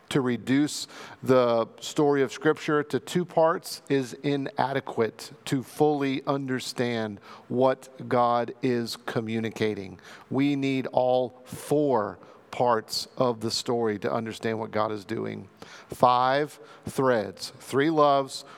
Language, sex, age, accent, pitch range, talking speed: English, male, 40-59, American, 115-140 Hz, 115 wpm